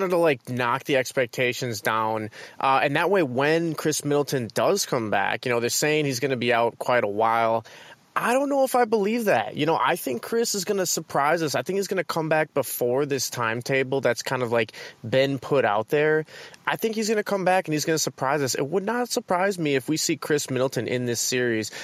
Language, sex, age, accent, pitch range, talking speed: English, male, 20-39, American, 120-160 Hz, 245 wpm